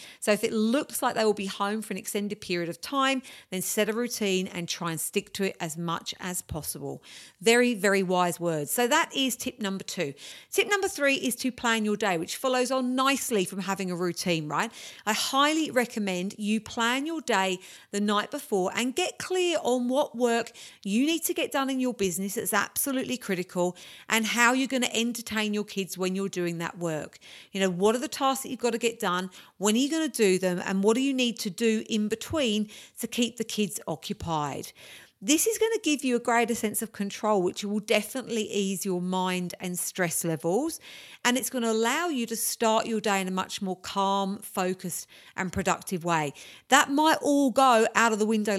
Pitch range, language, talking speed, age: 190-245 Hz, English, 215 wpm, 40-59